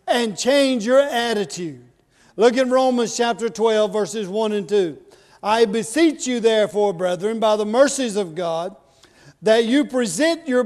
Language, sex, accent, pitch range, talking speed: English, male, American, 210-265 Hz, 160 wpm